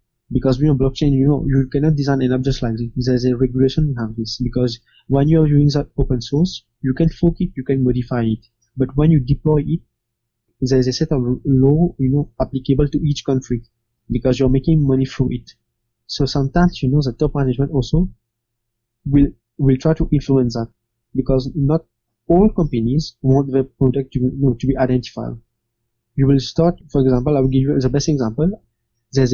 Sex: male